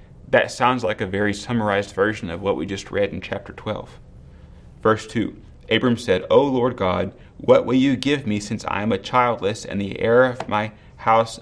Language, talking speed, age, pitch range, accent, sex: English, 200 wpm, 30-49, 100-120 Hz, American, male